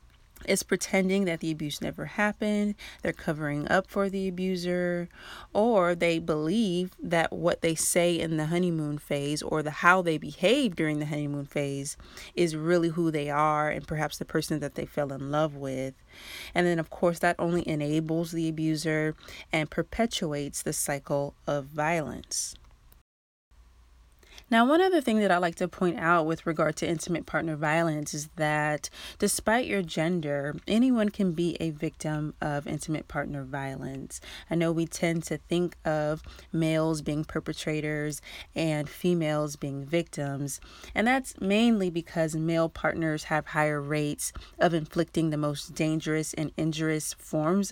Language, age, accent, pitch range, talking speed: English, 30-49, American, 150-175 Hz, 155 wpm